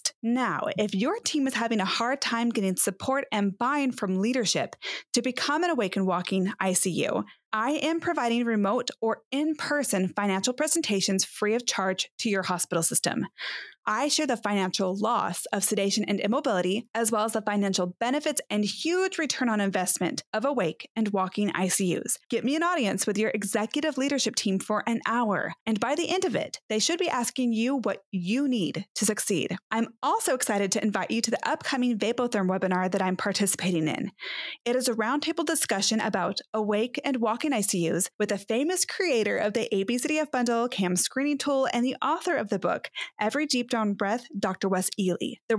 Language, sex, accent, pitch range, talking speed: English, female, American, 200-270 Hz, 185 wpm